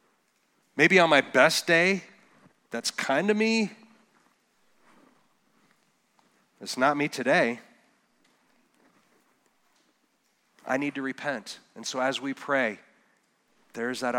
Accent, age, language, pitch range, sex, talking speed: American, 40-59, English, 115-140 Hz, male, 100 wpm